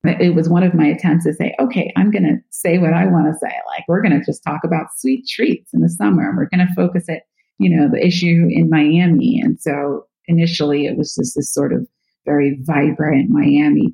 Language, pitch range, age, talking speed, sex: English, 155-200 Hz, 30-49, 230 wpm, female